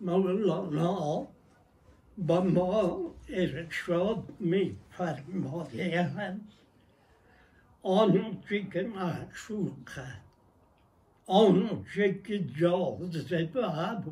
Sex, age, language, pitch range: male, 60-79, Persian, 165-200 Hz